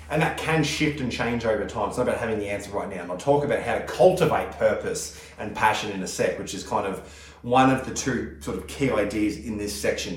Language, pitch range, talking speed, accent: English, 105-135 Hz, 265 wpm, Australian